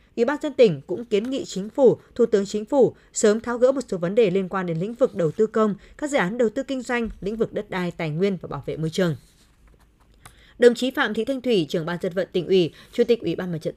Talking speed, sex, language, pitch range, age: 280 wpm, female, Vietnamese, 180-240 Hz, 20-39